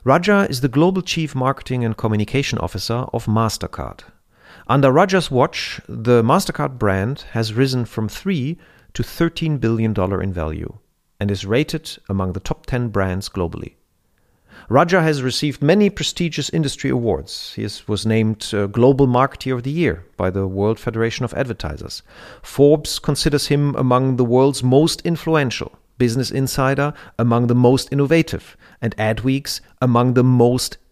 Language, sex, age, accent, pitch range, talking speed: German, male, 40-59, German, 105-150 Hz, 145 wpm